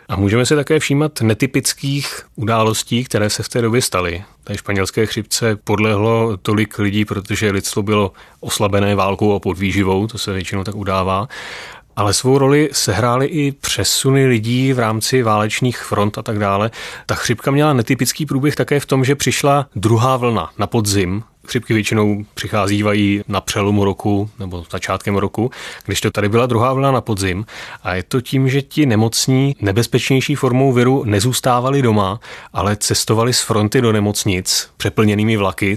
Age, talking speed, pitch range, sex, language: 30-49, 160 wpm, 100-125 Hz, male, Czech